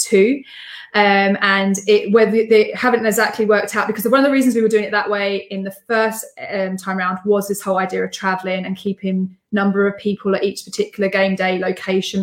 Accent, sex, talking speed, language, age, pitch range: British, female, 210 wpm, English, 20-39, 195-220 Hz